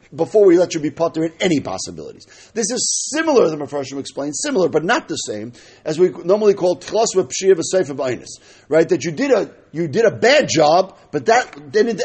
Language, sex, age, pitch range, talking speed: English, male, 50-69, 155-220 Hz, 195 wpm